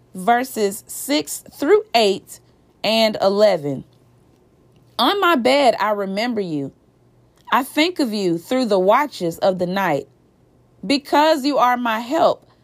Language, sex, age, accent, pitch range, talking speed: English, female, 30-49, American, 205-280 Hz, 130 wpm